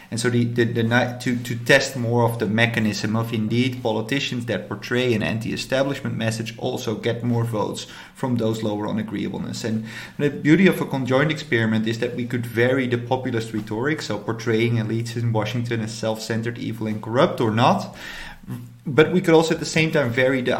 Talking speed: 190 wpm